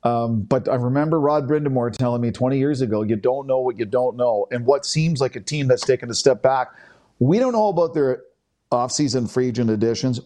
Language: English